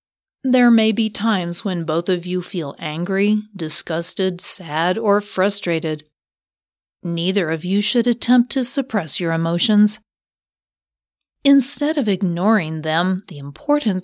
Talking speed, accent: 125 wpm, American